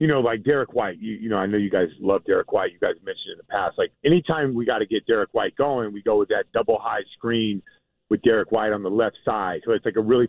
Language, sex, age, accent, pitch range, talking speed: English, male, 40-59, American, 115-150 Hz, 290 wpm